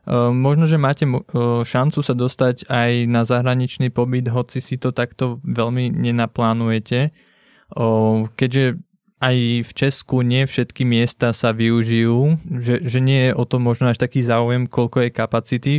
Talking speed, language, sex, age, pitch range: 140 wpm, Czech, male, 20-39, 120-135 Hz